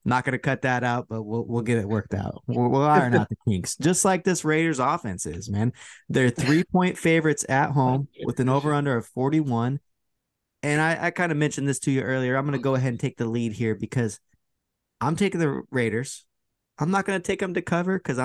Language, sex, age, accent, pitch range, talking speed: English, male, 20-39, American, 110-145 Hz, 225 wpm